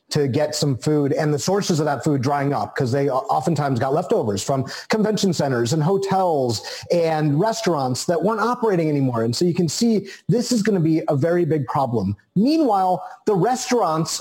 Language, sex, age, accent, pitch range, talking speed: English, male, 30-49, American, 140-190 Hz, 190 wpm